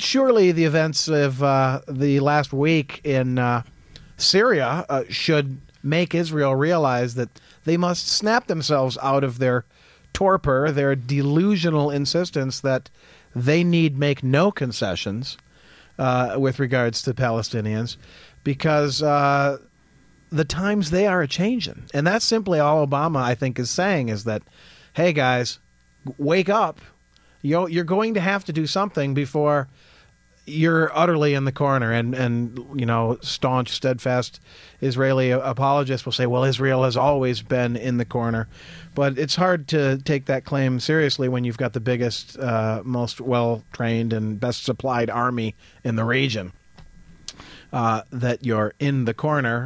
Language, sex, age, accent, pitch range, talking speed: English, male, 40-59, American, 120-150 Hz, 145 wpm